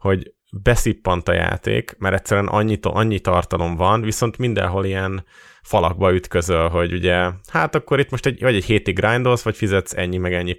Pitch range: 95-115 Hz